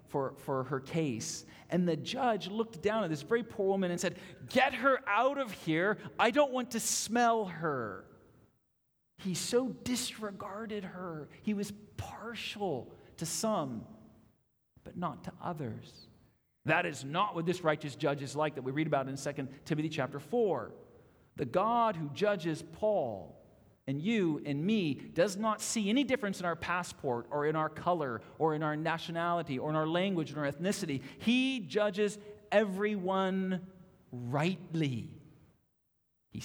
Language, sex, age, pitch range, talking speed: English, male, 40-59, 135-205 Hz, 155 wpm